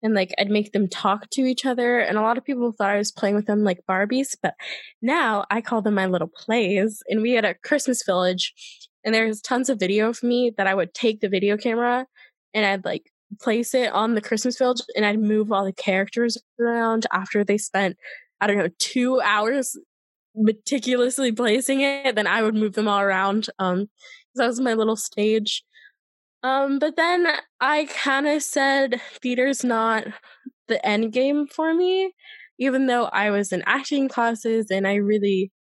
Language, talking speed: English, 195 wpm